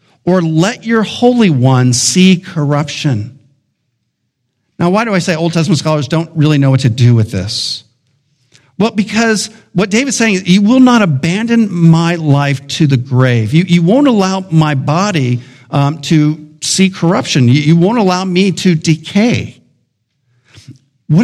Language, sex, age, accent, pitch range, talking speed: English, male, 50-69, American, 140-215 Hz, 160 wpm